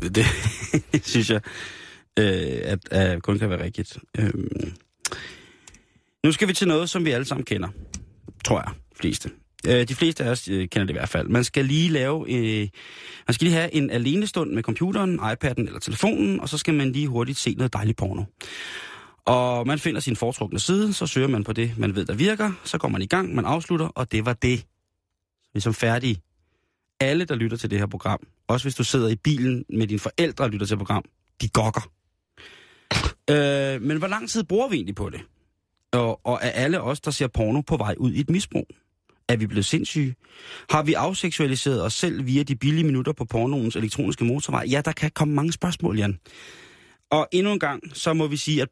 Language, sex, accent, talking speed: Danish, male, native, 205 wpm